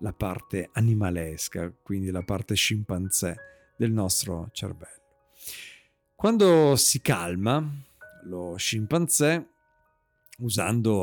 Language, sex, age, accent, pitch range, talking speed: Italian, male, 50-69, native, 105-135 Hz, 85 wpm